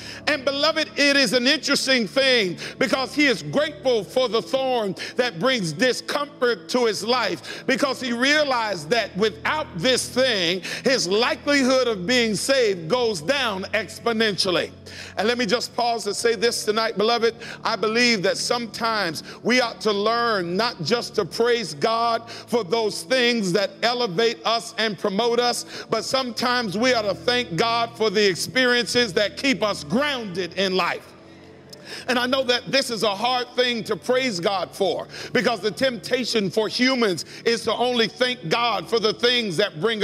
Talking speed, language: 165 wpm, English